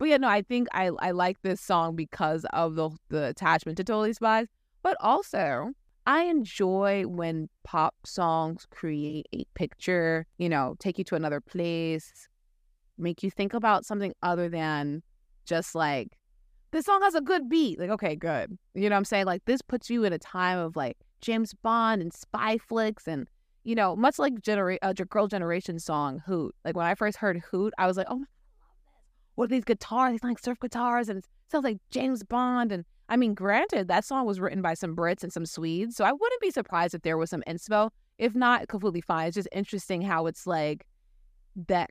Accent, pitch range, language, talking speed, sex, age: American, 165-225 Hz, English, 205 wpm, female, 20-39